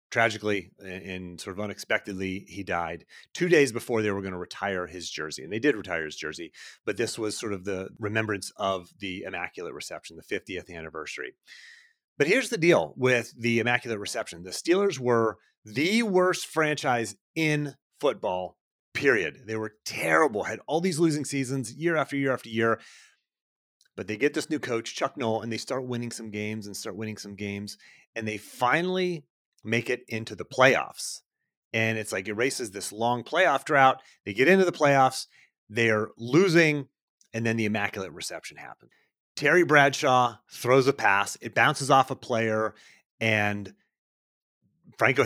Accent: American